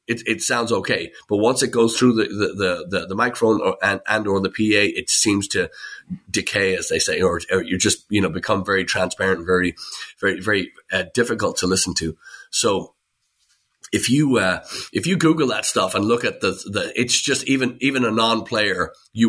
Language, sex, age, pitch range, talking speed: English, male, 30-49, 95-115 Hz, 210 wpm